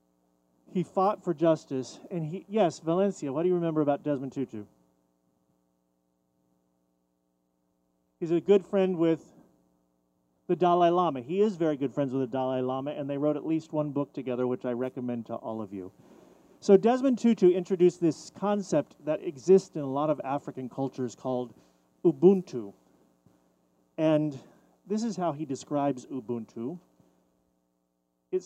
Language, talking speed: English, 150 wpm